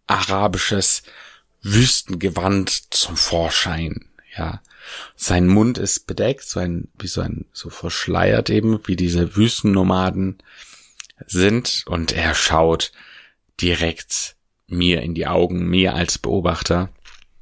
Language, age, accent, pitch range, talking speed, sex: German, 30-49, German, 90-110 Hz, 95 wpm, male